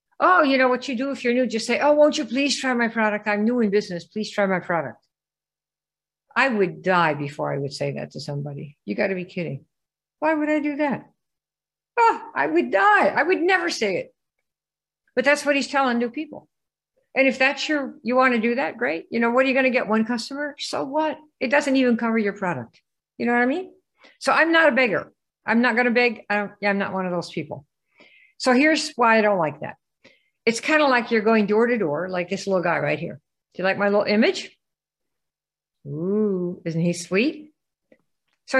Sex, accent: female, American